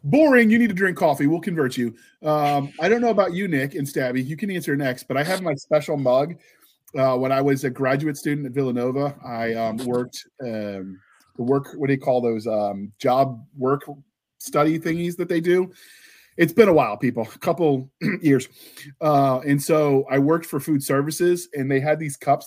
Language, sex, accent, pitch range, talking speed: English, male, American, 120-150 Hz, 205 wpm